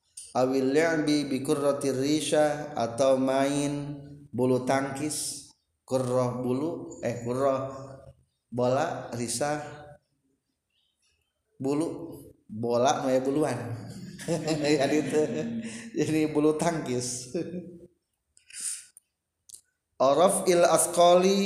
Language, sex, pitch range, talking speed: Indonesian, male, 125-170 Hz, 60 wpm